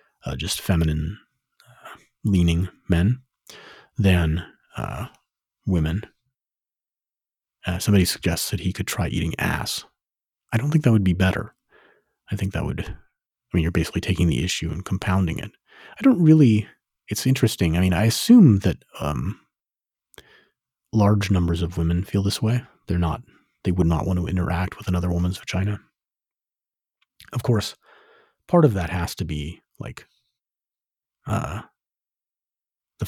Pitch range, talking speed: 90-105 Hz, 145 wpm